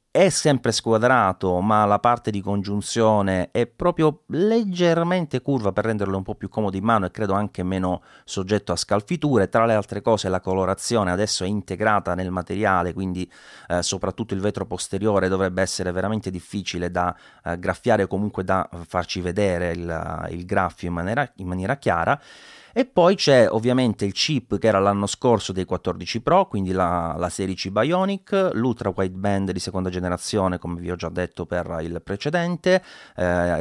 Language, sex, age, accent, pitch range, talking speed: Italian, male, 30-49, native, 90-120 Hz, 170 wpm